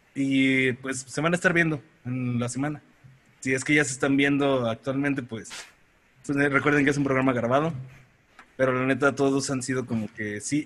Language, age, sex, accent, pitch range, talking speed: Spanish, 20-39, male, Mexican, 120-140 Hz, 195 wpm